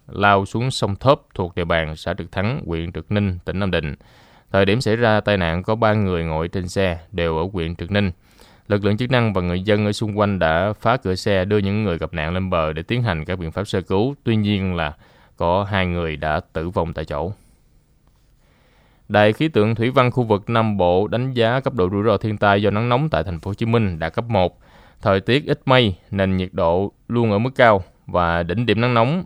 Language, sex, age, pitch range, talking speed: Vietnamese, male, 20-39, 85-110 Hz, 240 wpm